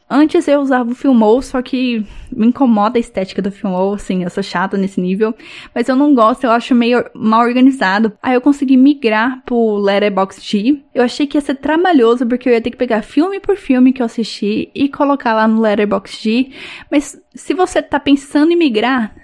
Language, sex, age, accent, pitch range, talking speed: Portuguese, female, 10-29, Brazilian, 215-265 Hz, 200 wpm